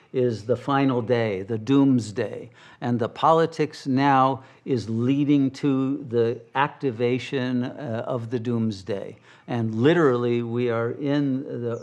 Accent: American